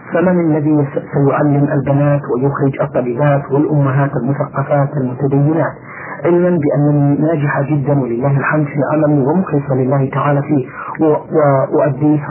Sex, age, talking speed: male, 50-69, 105 wpm